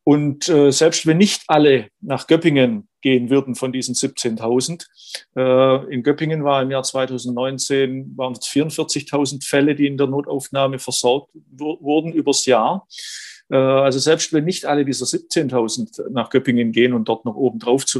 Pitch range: 130-150 Hz